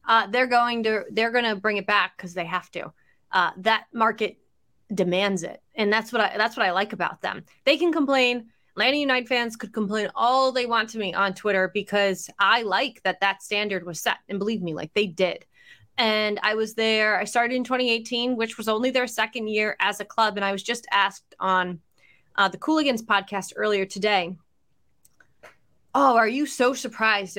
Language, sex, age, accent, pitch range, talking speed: English, female, 20-39, American, 195-240 Hz, 200 wpm